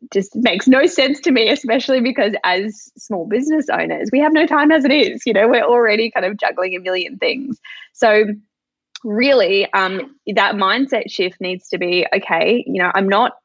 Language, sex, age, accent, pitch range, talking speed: English, female, 10-29, Australian, 185-240 Hz, 190 wpm